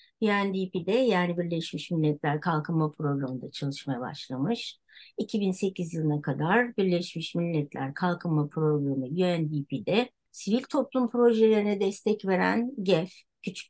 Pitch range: 155-215 Hz